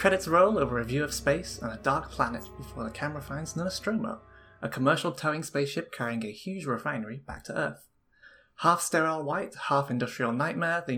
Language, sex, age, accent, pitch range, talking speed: English, male, 20-39, British, 120-170 Hz, 185 wpm